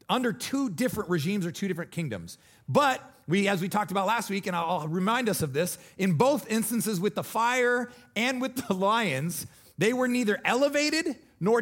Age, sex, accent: 30-49, male, American